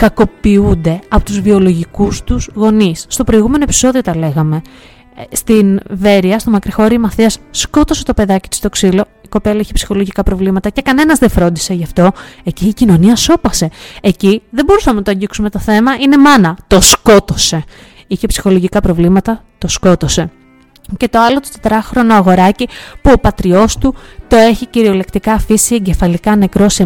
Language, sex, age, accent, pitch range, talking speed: Greek, female, 20-39, native, 190-230 Hz, 160 wpm